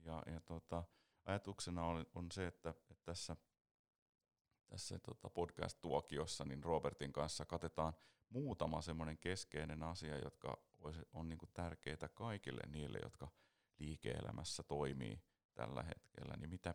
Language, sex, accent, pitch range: Finnish, male, native, 75-90 Hz